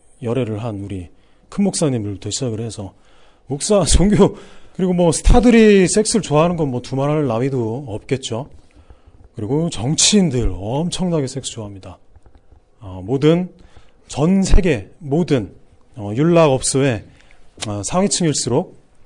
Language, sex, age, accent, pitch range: Korean, male, 40-59, native, 105-165 Hz